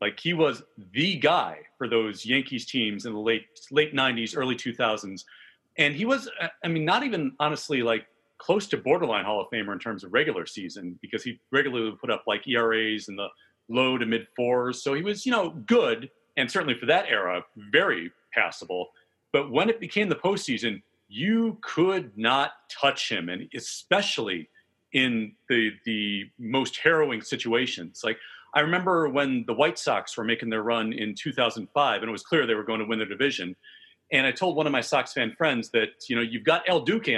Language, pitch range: English, 115-155 Hz